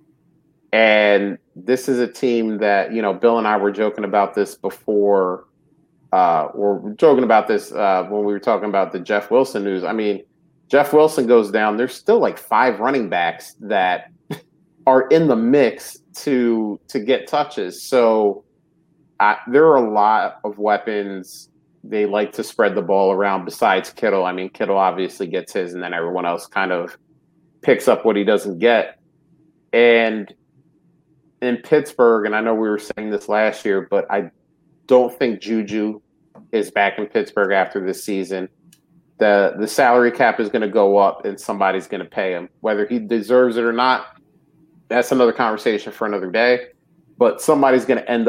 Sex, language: male, English